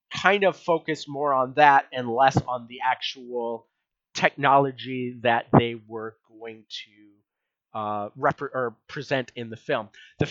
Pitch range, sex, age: 120-150 Hz, male, 30-49